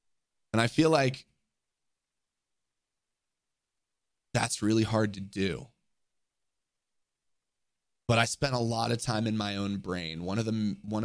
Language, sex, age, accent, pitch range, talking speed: English, male, 20-39, American, 105-145 Hz, 130 wpm